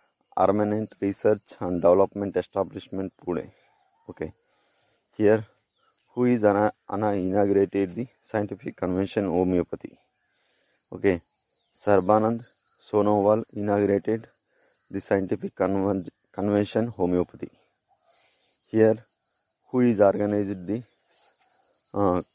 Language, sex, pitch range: English, male, 95-110 Hz